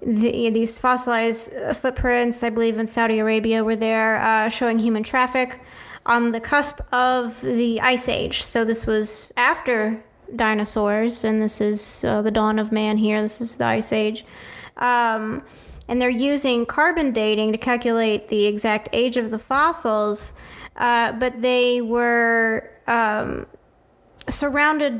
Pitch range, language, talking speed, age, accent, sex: 220-255 Hz, English, 145 wpm, 30-49, American, female